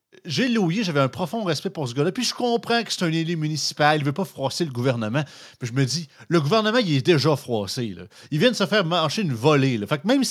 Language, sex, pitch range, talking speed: French, male, 135-185 Hz, 270 wpm